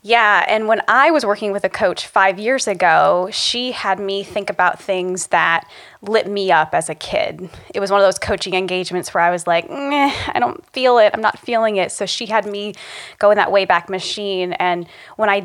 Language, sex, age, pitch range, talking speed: English, female, 20-39, 180-205 Hz, 220 wpm